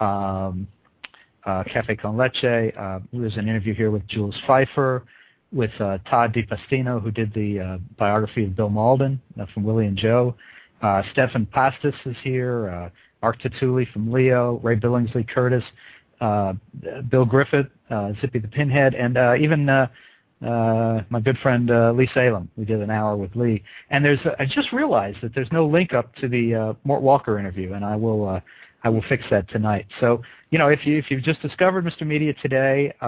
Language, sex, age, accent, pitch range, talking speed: English, male, 50-69, American, 110-140 Hz, 185 wpm